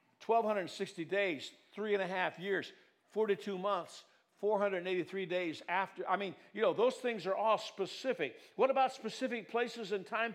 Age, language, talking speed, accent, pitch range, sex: 60-79, English, 155 wpm, American, 195-280 Hz, male